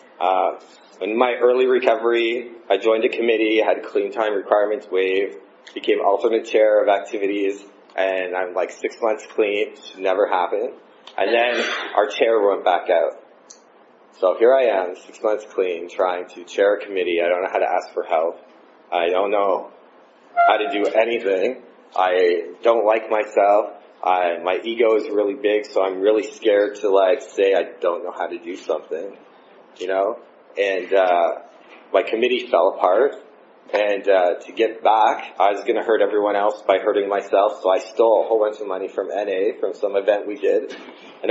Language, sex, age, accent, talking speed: English, male, 30-49, American, 185 wpm